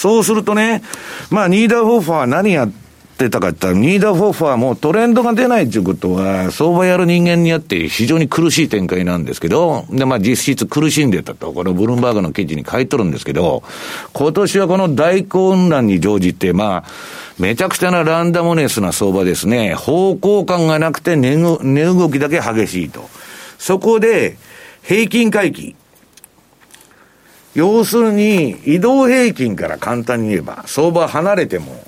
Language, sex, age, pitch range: Japanese, male, 50-69, 130-195 Hz